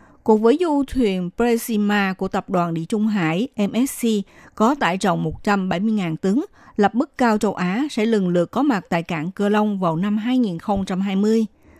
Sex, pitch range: female, 190-255 Hz